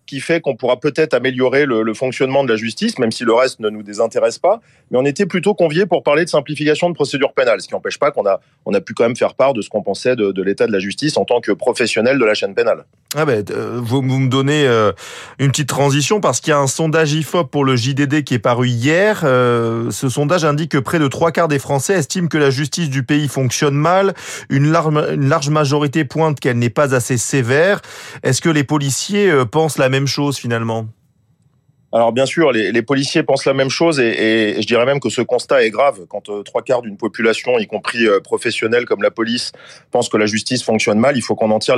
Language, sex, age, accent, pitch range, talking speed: French, male, 30-49, French, 115-150 Hz, 245 wpm